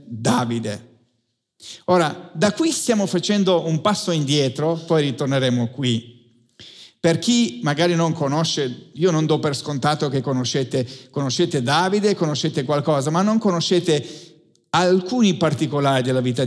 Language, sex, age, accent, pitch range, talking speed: Italian, male, 50-69, native, 145-200 Hz, 130 wpm